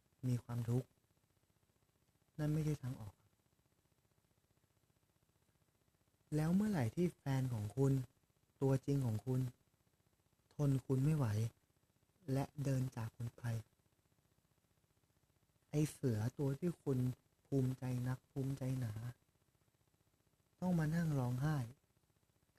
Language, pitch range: Thai, 115-140 Hz